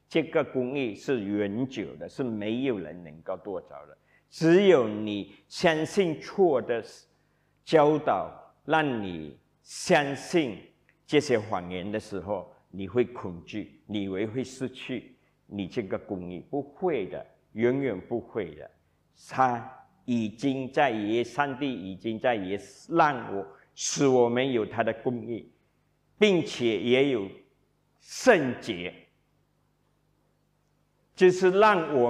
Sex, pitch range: male, 105-145 Hz